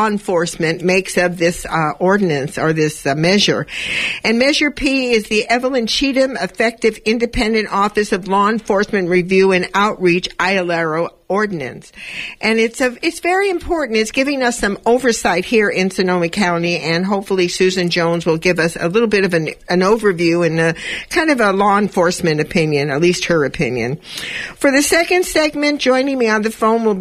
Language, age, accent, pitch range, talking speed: English, 50-69, American, 175-235 Hz, 180 wpm